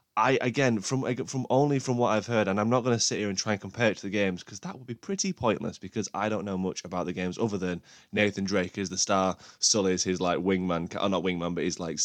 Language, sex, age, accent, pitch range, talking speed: English, male, 20-39, British, 95-120 Hz, 280 wpm